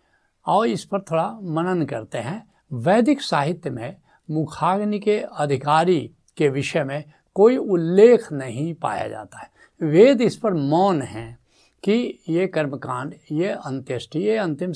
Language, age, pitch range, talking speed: Hindi, 70-89, 135-190 Hz, 140 wpm